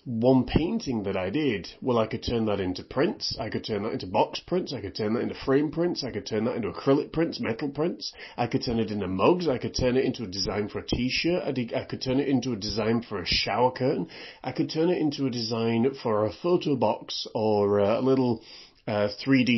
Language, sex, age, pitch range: English, male, 30-49, 105-135 Hz